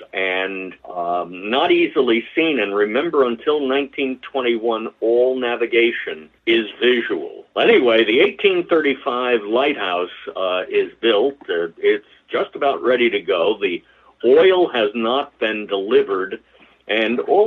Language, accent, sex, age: English, American, male, 50-69